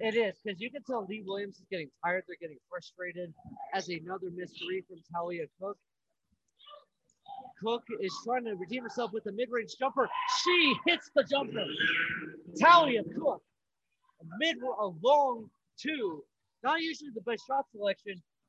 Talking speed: 155 wpm